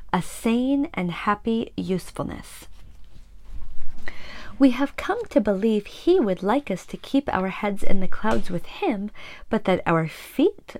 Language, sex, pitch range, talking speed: English, female, 180-270 Hz, 150 wpm